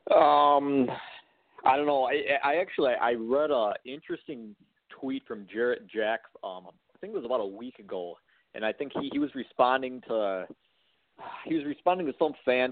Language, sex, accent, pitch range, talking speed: English, male, American, 110-135 Hz, 185 wpm